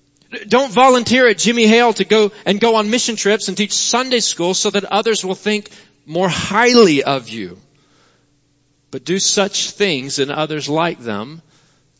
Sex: male